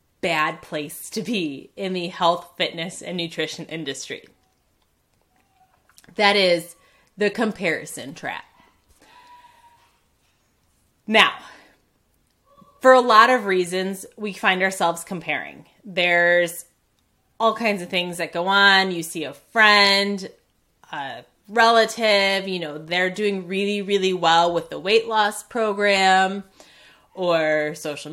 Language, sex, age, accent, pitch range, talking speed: English, female, 20-39, American, 175-225 Hz, 115 wpm